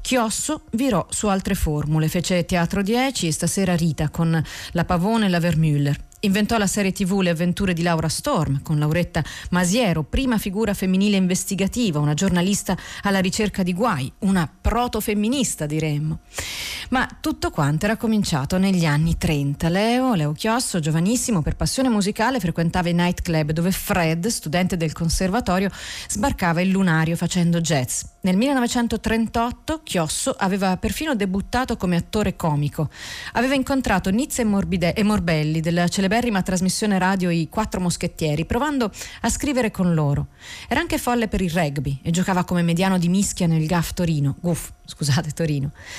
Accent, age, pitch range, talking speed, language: native, 30-49, 165-215 Hz, 145 wpm, Italian